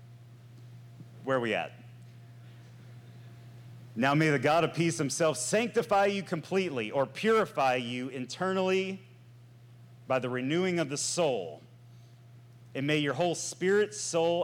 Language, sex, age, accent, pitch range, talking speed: English, male, 30-49, American, 120-160 Hz, 125 wpm